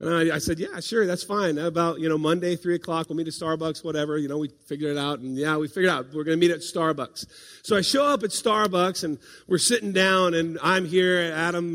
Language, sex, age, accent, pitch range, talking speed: English, male, 40-59, American, 140-180 Hz, 250 wpm